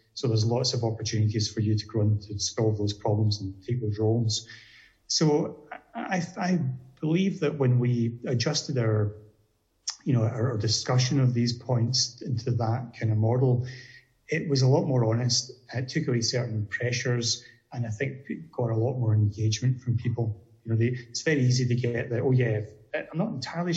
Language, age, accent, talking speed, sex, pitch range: English, 30-49, British, 190 wpm, male, 115-135 Hz